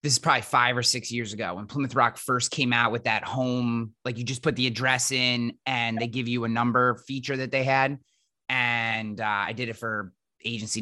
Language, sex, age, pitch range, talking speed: English, male, 30-49, 120-160 Hz, 225 wpm